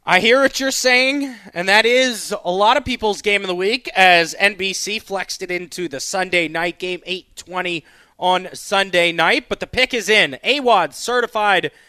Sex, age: male, 30-49